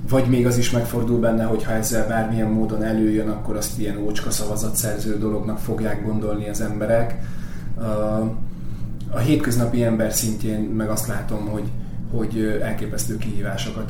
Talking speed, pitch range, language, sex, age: 145 wpm, 105-115 Hz, Hungarian, male, 30-49